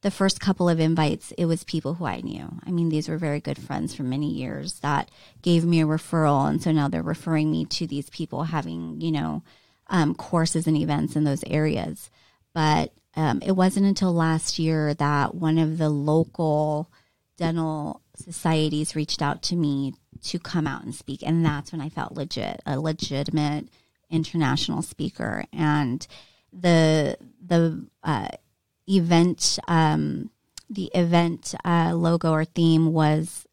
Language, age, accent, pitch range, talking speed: English, 30-49, American, 150-170 Hz, 165 wpm